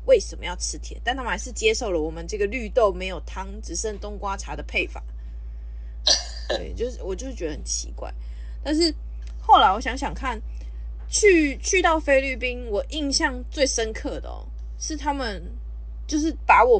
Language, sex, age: Chinese, female, 20-39